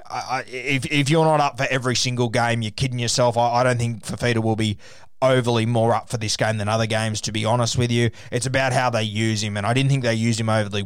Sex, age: male, 20-39